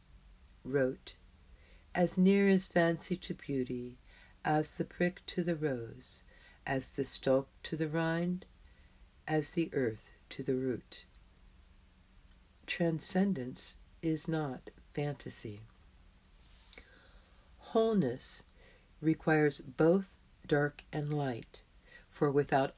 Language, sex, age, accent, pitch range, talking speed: English, female, 60-79, American, 125-170 Hz, 95 wpm